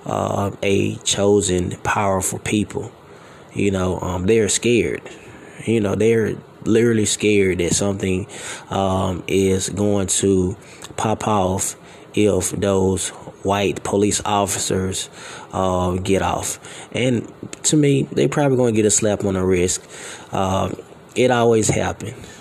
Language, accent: English, American